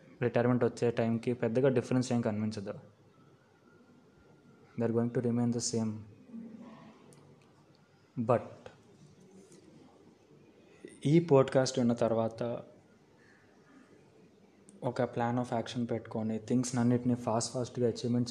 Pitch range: 115-125 Hz